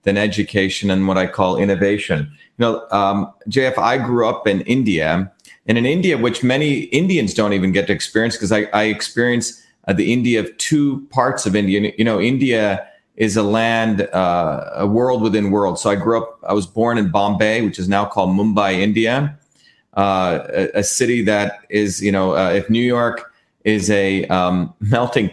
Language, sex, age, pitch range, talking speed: English, male, 40-59, 100-115 Hz, 190 wpm